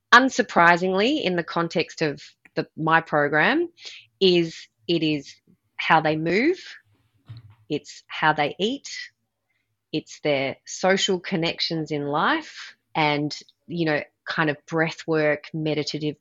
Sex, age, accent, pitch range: female, 30-49, Australian, 145-175 Hz